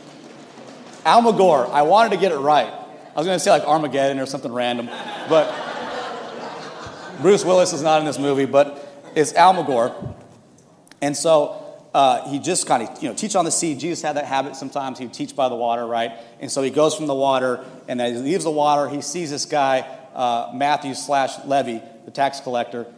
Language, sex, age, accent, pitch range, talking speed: English, male, 30-49, American, 130-165 Hz, 200 wpm